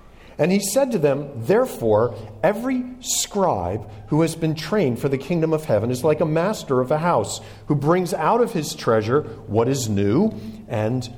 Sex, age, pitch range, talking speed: male, 50-69, 110-170 Hz, 180 wpm